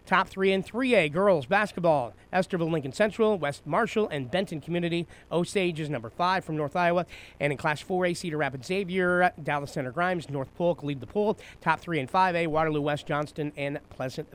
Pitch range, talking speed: 145-185 Hz, 190 wpm